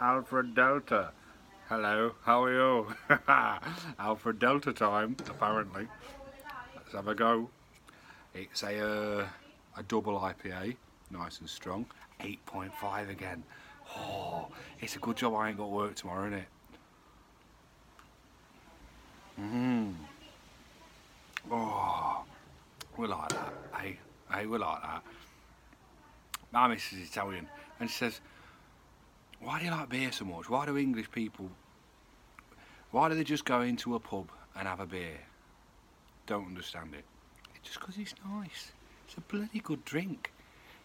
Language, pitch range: English, 100-135 Hz